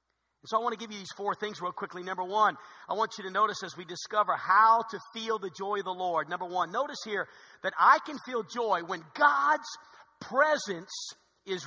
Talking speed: 215 wpm